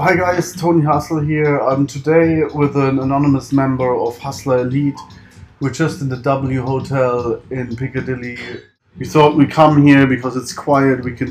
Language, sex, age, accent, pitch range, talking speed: English, male, 30-49, German, 125-140 Hz, 175 wpm